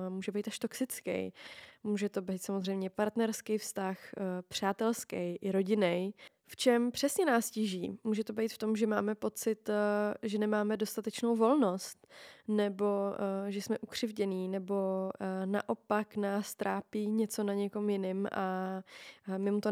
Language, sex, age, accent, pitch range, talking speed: Czech, female, 20-39, native, 195-220 Hz, 140 wpm